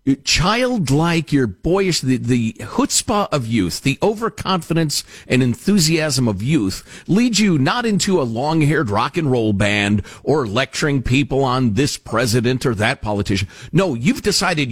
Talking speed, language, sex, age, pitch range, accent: 150 wpm, English, male, 50-69, 120-190 Hz, American